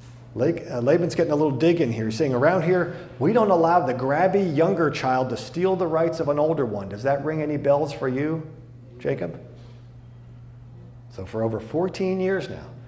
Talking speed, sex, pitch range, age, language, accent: 190 wpm, male, 120-150 Hz, 40-59, English, American